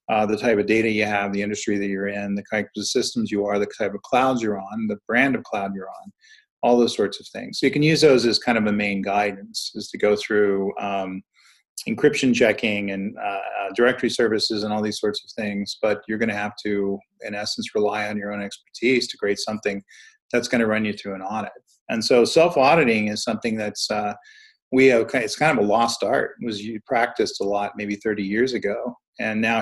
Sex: male